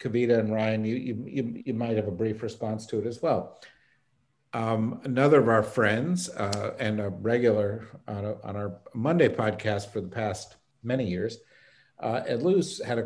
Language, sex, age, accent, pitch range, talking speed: English, male, 50-69, American, 110-130 Hz, 185 wpm